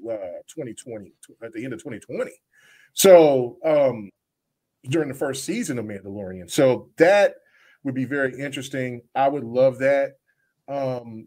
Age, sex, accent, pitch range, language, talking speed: 30-49, male, American, 130-170 Hz, English, 145 wpm